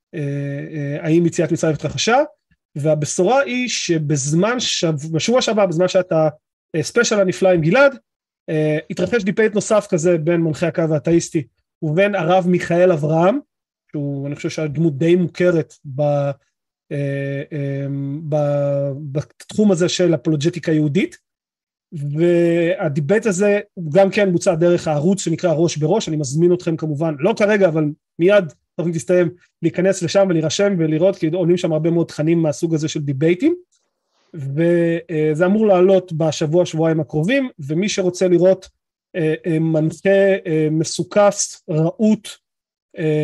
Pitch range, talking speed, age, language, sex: 155-185 Hz, 120 wpm, 30-49, Hebrew, male